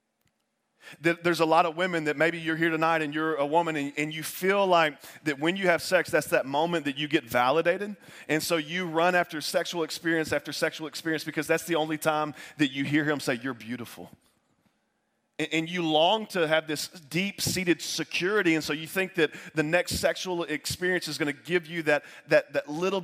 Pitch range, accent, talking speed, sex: 150-175 Hz, American, 210 wpm, male